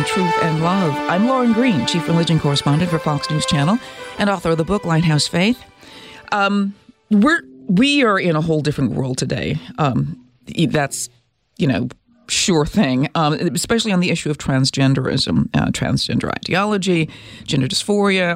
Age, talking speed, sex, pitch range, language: 40-59, 155 wpm, female, 145-190 Hz, English